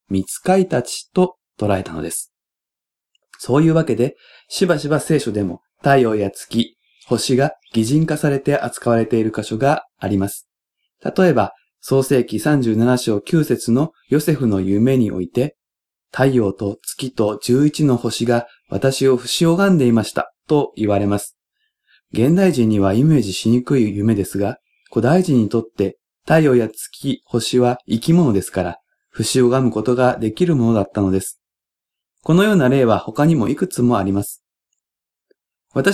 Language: Japanese